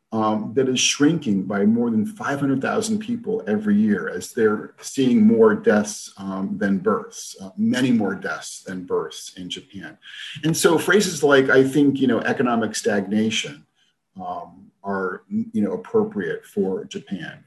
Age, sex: 40-59, male